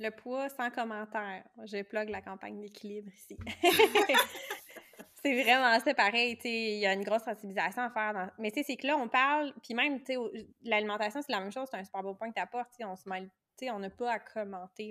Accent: Canadian